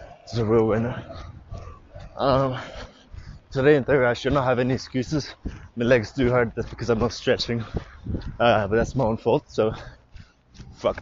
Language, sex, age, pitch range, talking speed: English, male, 20-39, 105-125 Hz, 165 wpm